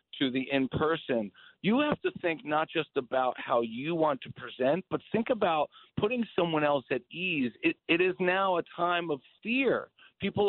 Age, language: 40-59, English